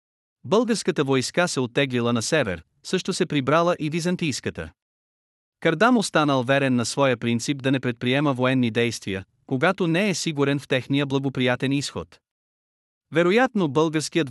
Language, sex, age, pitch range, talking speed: Bulgarian, male, 30-49, 125-160 Hz, 135 wpm